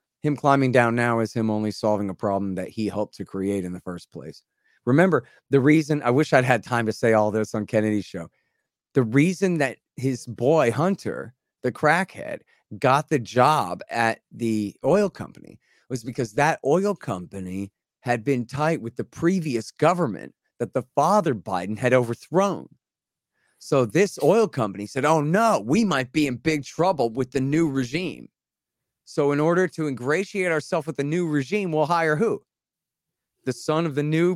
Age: 30-49